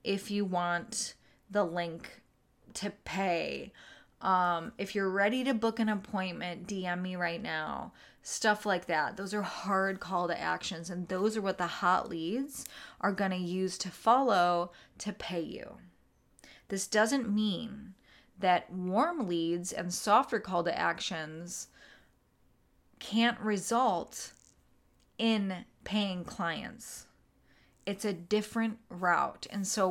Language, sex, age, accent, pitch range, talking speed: English, female, 20-39, American, 175-220 Hz, 130 wpm